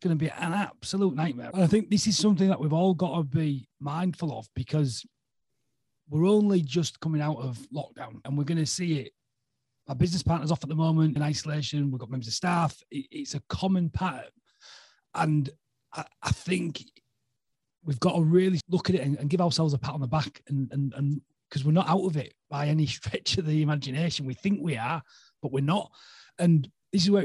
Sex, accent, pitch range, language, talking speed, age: male, British, 130-170 Hz, English, 210 wpm, 30-49